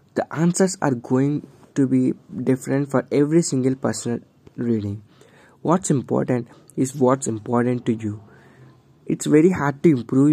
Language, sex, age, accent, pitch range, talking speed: English, male, 20-39, Indian, 120-140 Hz, 140 wpm